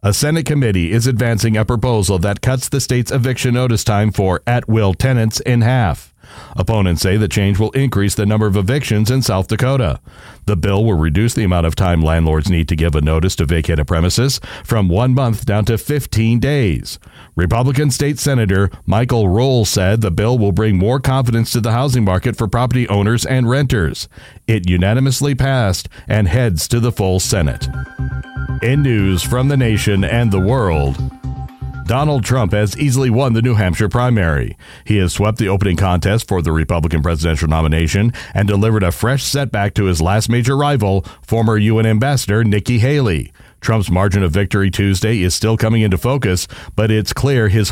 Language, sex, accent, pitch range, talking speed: English, male, American, 95-125 Hz, 180 wpm